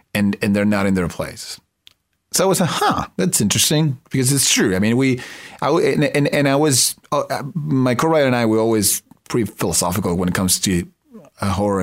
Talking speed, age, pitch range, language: 205 wpm, 30-49, 95-125 Hz, English